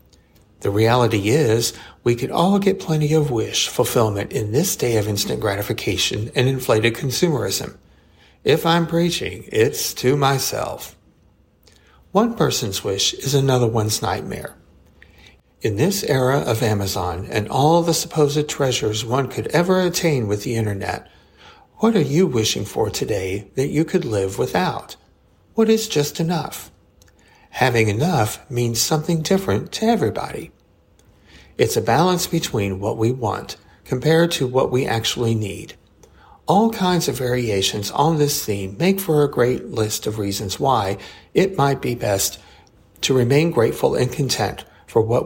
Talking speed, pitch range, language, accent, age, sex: 145 wpm, 105-155 Hz, English, American, 60-79, male